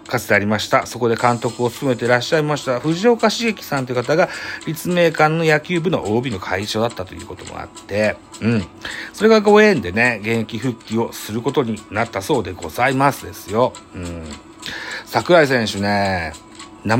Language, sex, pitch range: Japanese, male, 95-155 Hz